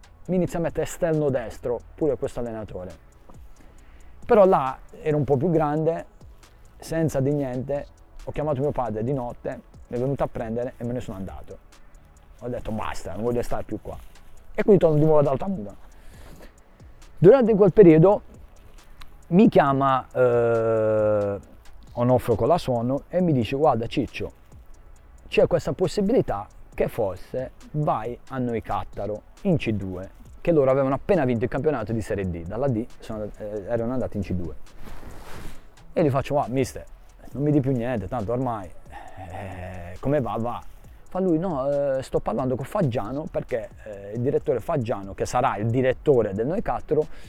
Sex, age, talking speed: male, 30-49, 165 wpm